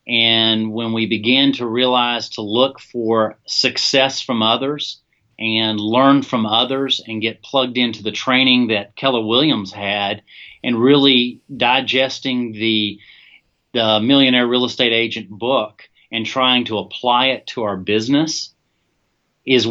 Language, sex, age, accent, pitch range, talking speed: English, male, 40-59, American, 115-130 Hz, 135 wpm